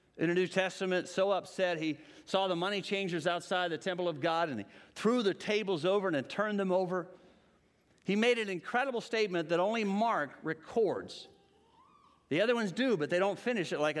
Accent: American